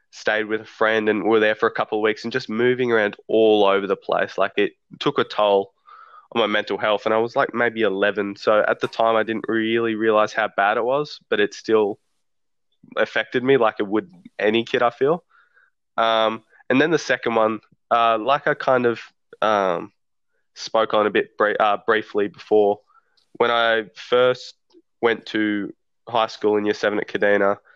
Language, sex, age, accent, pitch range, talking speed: English, male, 20-39, Australian, 105-120 Hz, 195 wpm